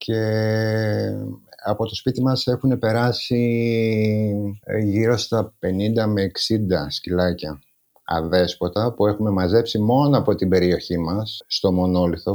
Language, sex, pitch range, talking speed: Greek, male, 100-120 Hz, 115 wpm